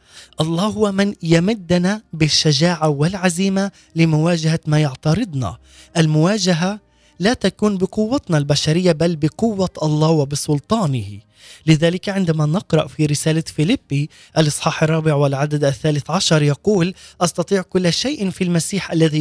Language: Arabic